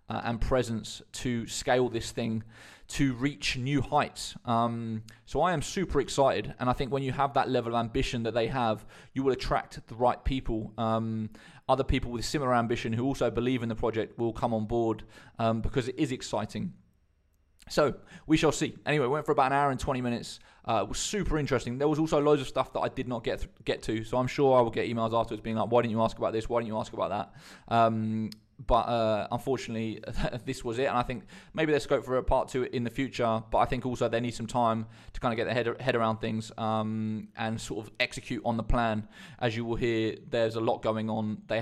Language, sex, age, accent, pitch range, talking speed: English, male, 20-39, British, 110-130 Hz, 235 wpm